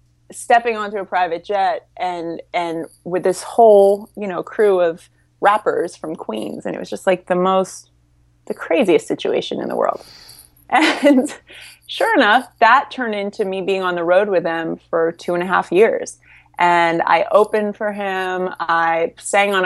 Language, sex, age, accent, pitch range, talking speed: English, female, 20-39, American, 170-205 Hz, 175 wpm